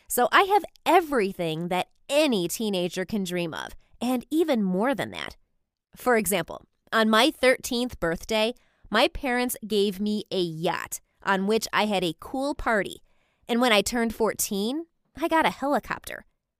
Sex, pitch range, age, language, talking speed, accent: female, 190-275 Hz, 20-39, English, 155 wpm, American